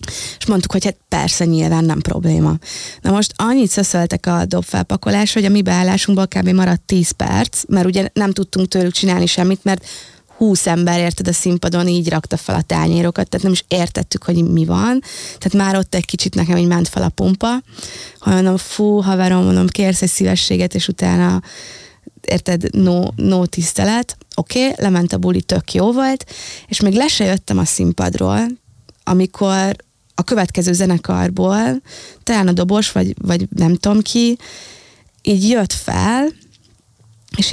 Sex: female